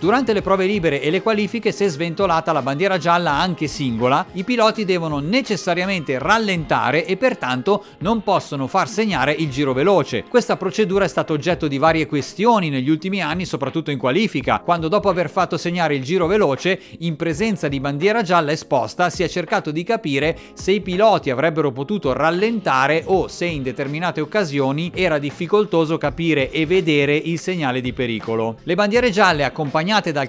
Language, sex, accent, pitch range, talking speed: Italian, male, native, 145-200 Hz, 170 wpm